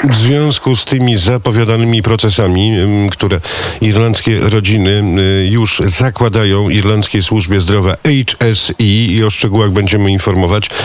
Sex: male